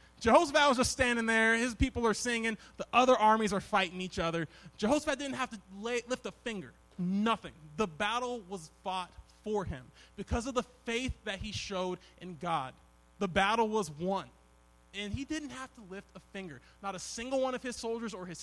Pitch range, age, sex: 170-230 Hz, 20-39, male